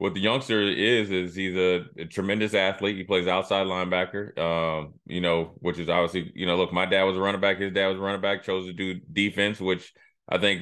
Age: 20-39